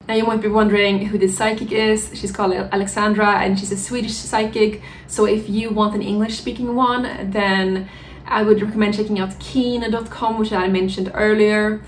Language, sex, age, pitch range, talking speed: English, female, 20-39, 195-220 Hz, 175 wpm